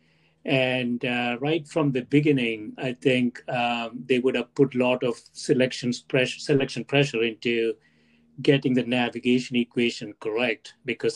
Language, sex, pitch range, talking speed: English, male, 120-140 Hz, 140 wpm